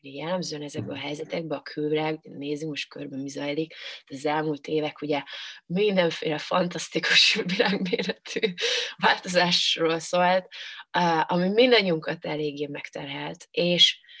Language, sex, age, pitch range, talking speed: Hungarian, female, 20-39, 150-175 Hz, 105 wpm